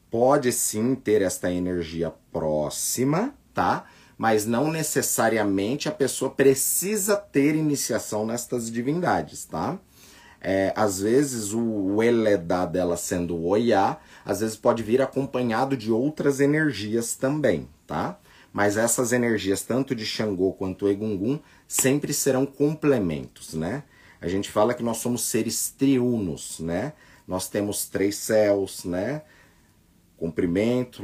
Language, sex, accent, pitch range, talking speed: Portuguese, male, Brazilian, 95-130 Hz, 125 wpm